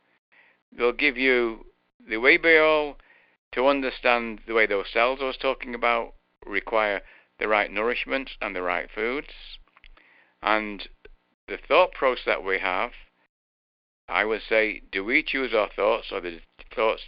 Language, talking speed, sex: English, 150 wpm, male